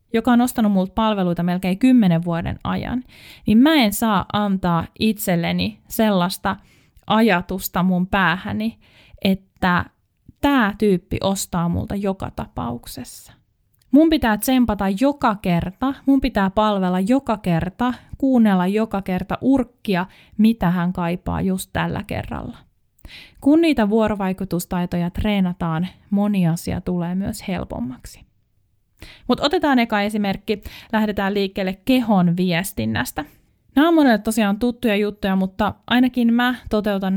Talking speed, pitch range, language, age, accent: 120 wpm, 180-235 Hz, Finnish, 20-39, native